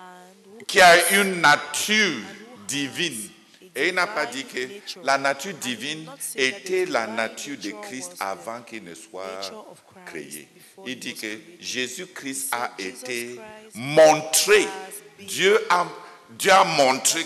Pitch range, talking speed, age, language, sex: 115-195 Hz, 125 wpm, 60-79, English, male